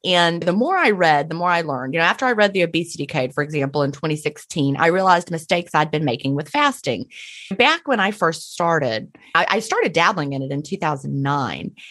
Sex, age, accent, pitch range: female, 30-49, American, 145-195 Hz